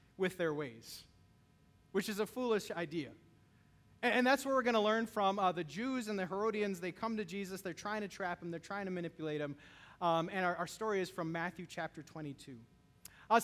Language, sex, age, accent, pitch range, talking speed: English, male, 30-49, American, 145-215 Hz, 210 wpm